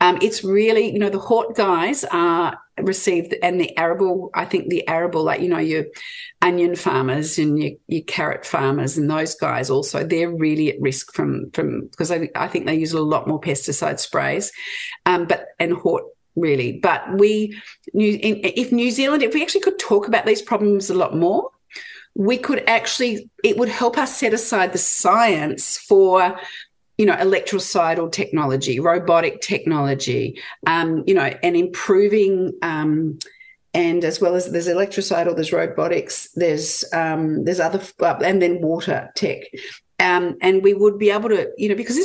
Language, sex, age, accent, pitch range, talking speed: English, female, 40-59, Australian, 170-245 Hz, 175 wpm